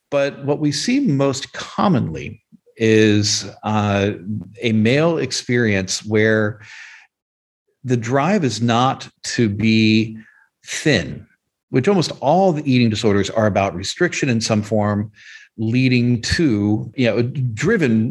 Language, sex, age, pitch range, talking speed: English, male, 50-69, 105-135 Hz, 120 wpm